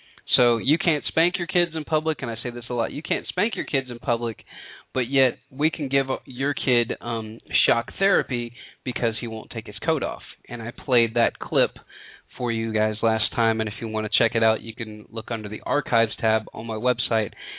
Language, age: English, 30-49